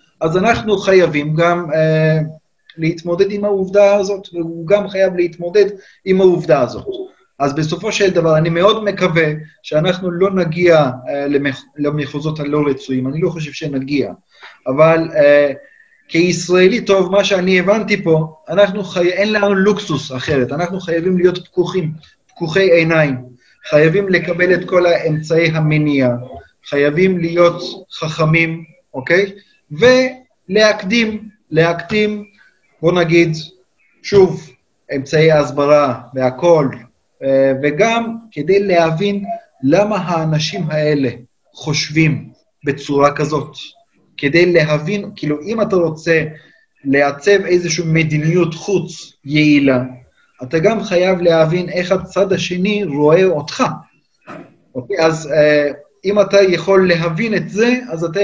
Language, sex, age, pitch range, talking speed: Hebrew, male, 30-49, 155-195 Hz, 115 wpm